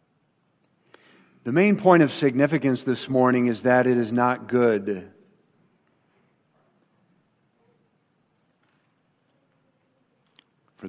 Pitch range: 105-140 Hz